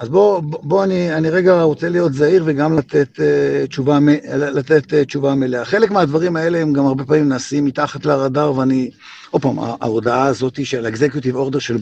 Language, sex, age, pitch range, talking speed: Hebrew, male, 50-69, 135-170 Hz, 190 wpm